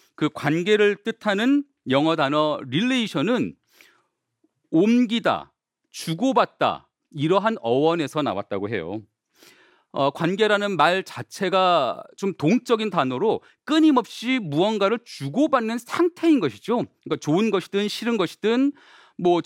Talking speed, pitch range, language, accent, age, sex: 95 wpm, 155-240 Hz, English, Korean, 40-59, male